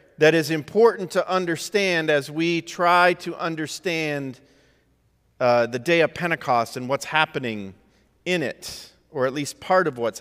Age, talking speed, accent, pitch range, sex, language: 50-69, 155 wpm, American, 155-210 Hz, male, English